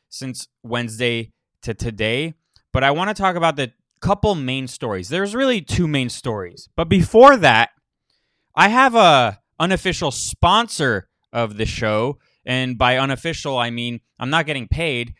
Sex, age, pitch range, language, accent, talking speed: male, 20-39, 115-150 Hz, English, American, 155 wpm